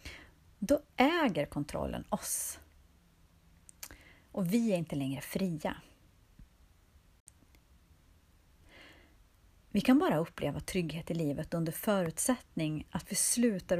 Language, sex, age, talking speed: Swedish, female, 30-49, 95 wpm